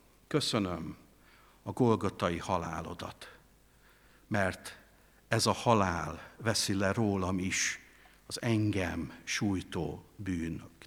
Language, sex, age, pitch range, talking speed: Hungarian, male, 60-79, 100-150 Hz, 90 wpm